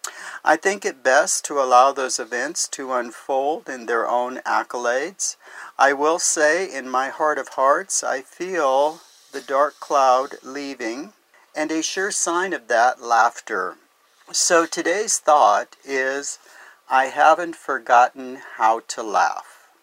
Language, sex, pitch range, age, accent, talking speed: English, male, 125-155 Hz, 50-69, American, 135 wpm